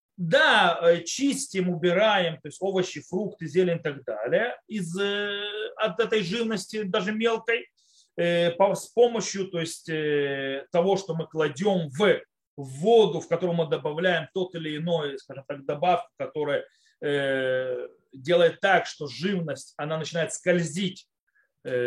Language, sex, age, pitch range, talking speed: Russian, male, 30-49, 165-225 Hz, 125 wpm